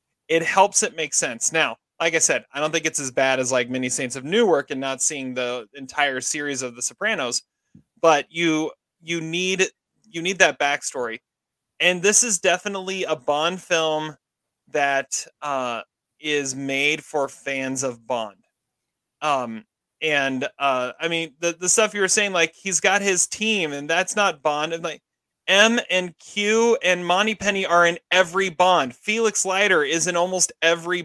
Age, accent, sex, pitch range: 30-49, American, male, 145-185 Hz